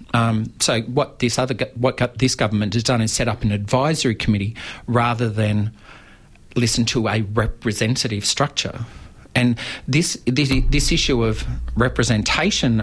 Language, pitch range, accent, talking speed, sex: English, 105-120 Hz, Australian, 140 wpm, male